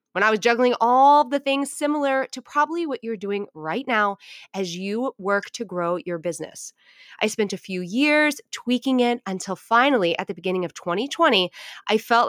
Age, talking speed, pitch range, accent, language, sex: 20-39, 185 wpm, 195-275 Hz, American, English, female